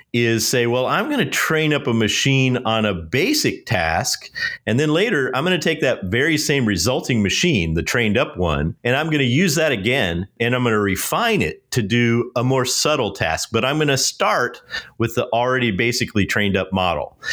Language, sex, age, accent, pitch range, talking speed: English, male, 40-59, American, 100-130 Hz, 210 wpm